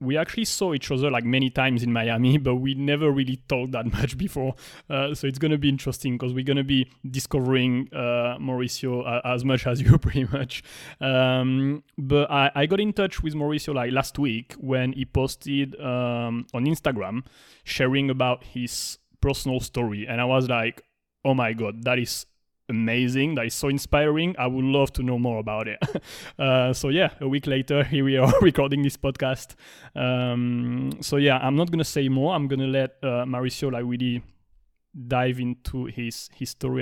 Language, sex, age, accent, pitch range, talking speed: English, male, 30-49, French, 125-140 Hz, 190 wpm